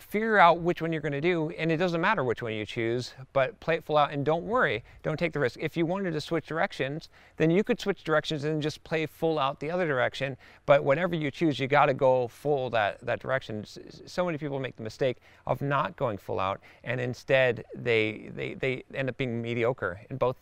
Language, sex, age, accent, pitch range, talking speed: English, male, 40-59, American, 125-165 Hz, 240 wpm